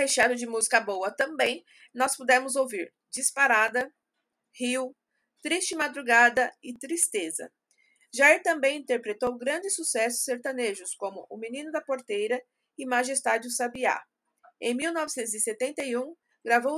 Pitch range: 235-285 Hz